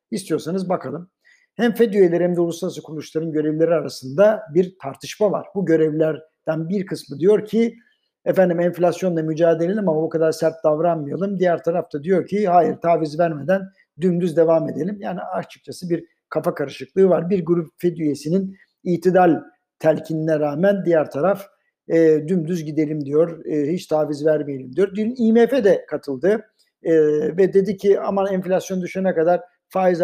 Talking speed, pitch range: 150 wpm, 160-200 Hz